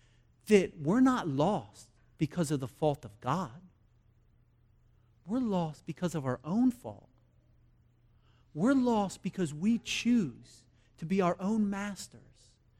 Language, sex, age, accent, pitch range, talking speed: English, male, 40-59, American, 120-185 Hz, 125 wpm